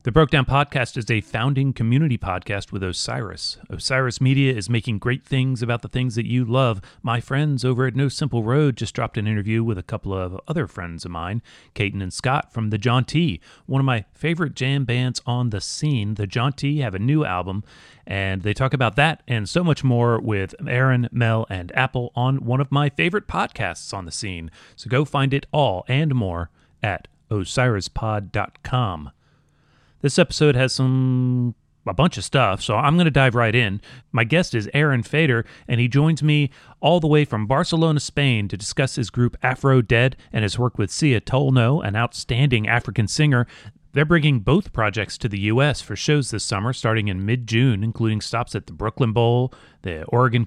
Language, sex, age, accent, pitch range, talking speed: English, male, 30-49, American, 110-140 Hz, 195 wpm